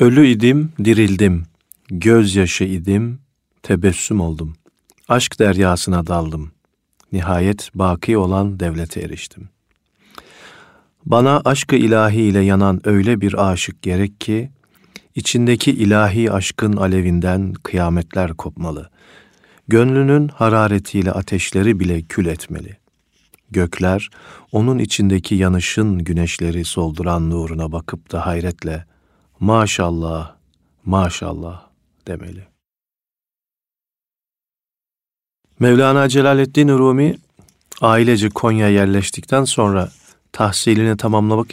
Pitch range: 90-110 Hz